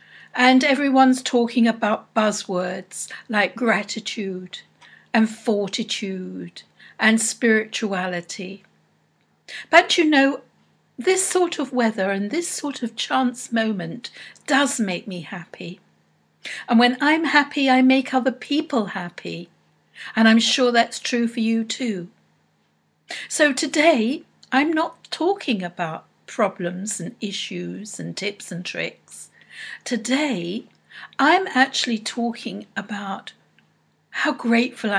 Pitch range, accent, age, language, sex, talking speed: 195-270 Hz, British, 60-79, English, female, 110 wpm